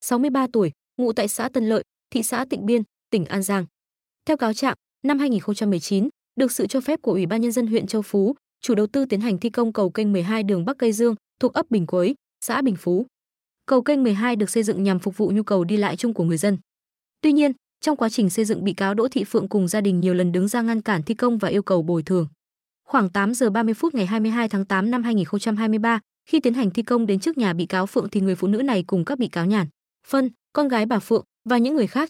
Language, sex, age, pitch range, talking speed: Vietnamese, female, 20-39, 195-245 Hz, 260 wpm